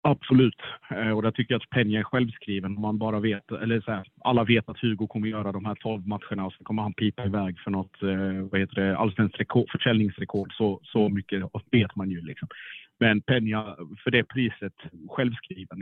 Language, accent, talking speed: Swedish, Norwegian, 200 wpm